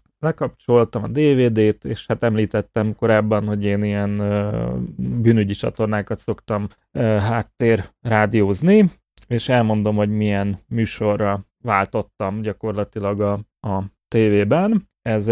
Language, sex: Hungarian, male